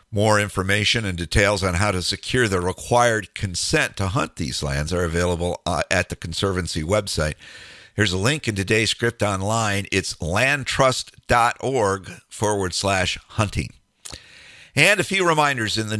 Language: English